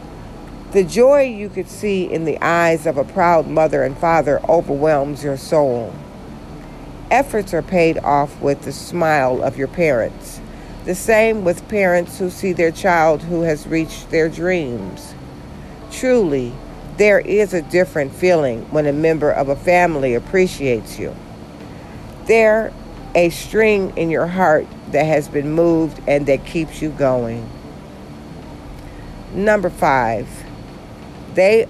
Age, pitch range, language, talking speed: 50-69, 145-185 Hz, English, 135 wpm